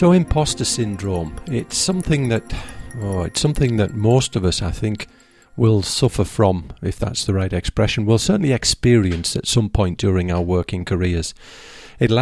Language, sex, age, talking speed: English, male, 40-59, 165 wpm